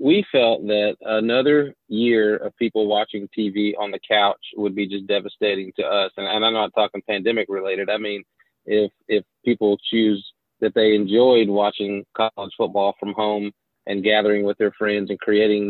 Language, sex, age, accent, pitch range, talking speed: English, male, 30-49, American, 100-115 Hz, 175 wpm